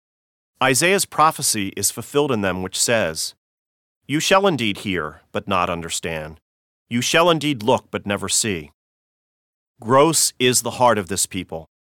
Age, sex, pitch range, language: 40-59, male, 90-130 Hz, English